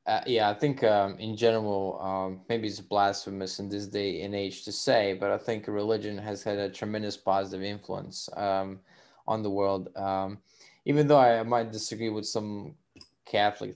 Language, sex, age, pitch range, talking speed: English, male, 20-39, 100-120 Hz, 185 wpm